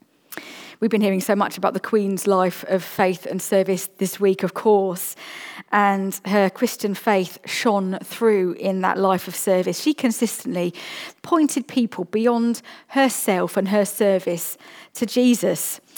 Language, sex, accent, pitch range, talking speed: English, female, British, 190-240 Hz, 145 wpm